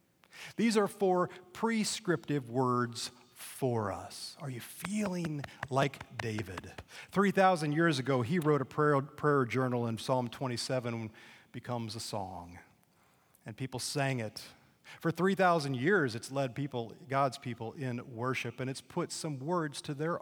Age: 40-59